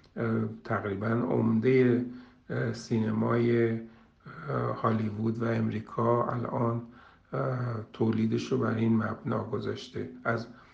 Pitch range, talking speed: 110-120 Hz, 75 wpm